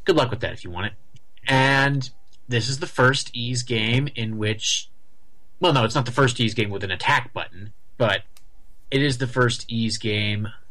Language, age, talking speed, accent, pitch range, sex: English, 30-49, 200 wpm, American, 105-125 Hz, male